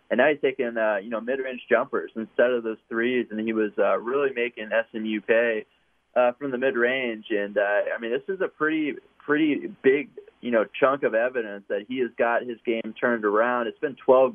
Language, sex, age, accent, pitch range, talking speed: English, male, 20-39, American, 115-130 Hz, 215 wpm